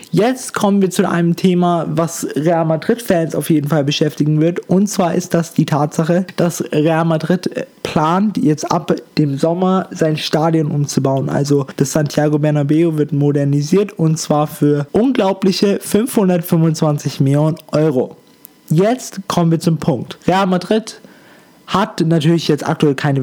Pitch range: 145-175 Hz